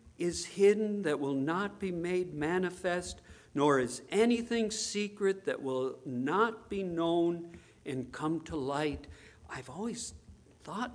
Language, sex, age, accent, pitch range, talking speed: English, male, 50-69, American, 145-210 Hz, 130 wpm